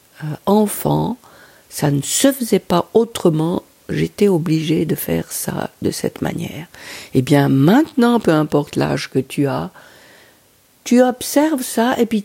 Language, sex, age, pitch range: French, female, 50-69, 155-220 Hz